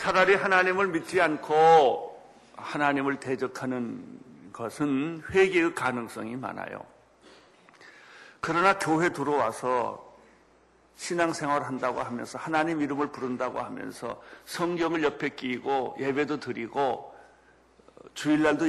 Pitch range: 130-165 Hz